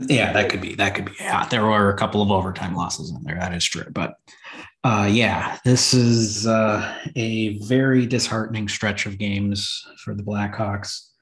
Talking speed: 195 wpm